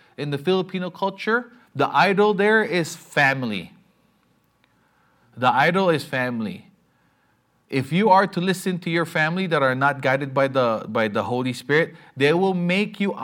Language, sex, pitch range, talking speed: English, male, 130-195 Hz, 160 wpm